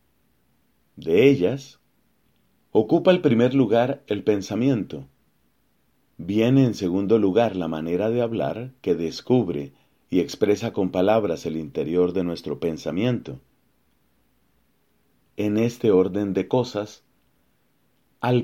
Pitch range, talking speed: 95-125 Hz, 105 wpm